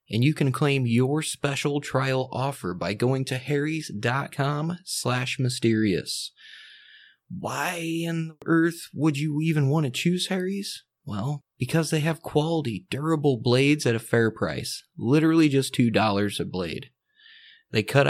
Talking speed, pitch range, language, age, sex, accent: 135 wpm, 115-145 Hz, English, 20-39, male, American